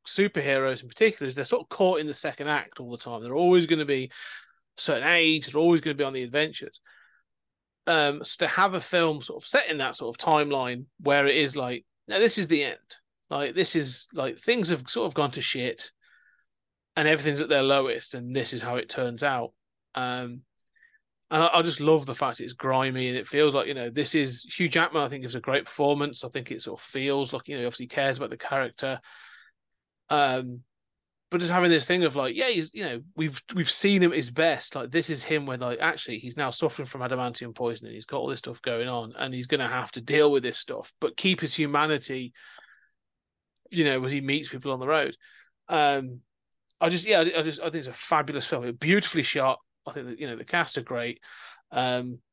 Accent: British